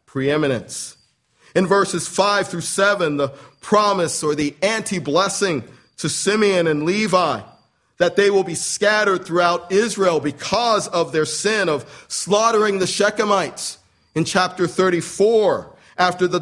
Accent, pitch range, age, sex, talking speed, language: American, 165-210 Hz, 40-59, male, 130 wpm, English